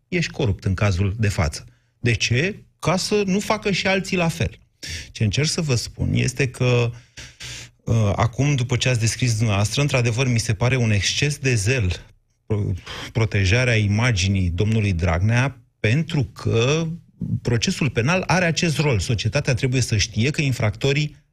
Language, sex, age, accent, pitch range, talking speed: Romanian, male, 30-49, native, 110-145 Hz, 150 wpm